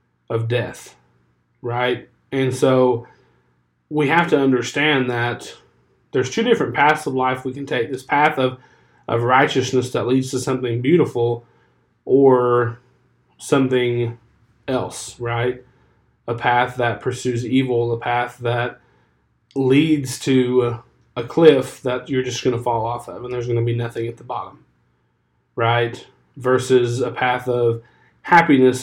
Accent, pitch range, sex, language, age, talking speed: American, 120-135 Hz, male, English, 20-39, 140 wpm